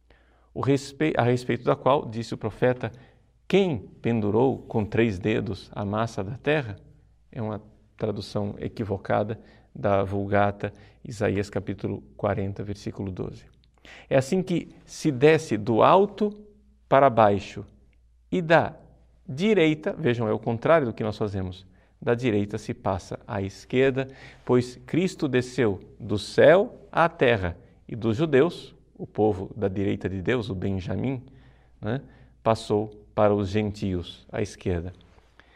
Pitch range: 100-140 Hz